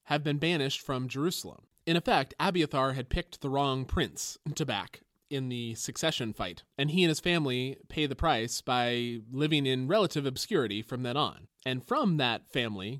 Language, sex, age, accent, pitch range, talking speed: English, male, 20-39, American, 120-155 Hz, 180 wpm